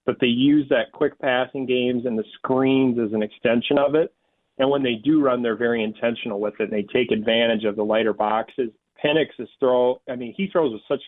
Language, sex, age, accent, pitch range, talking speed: English, male, 40-59, American, 115-130 Hz, 220 wpm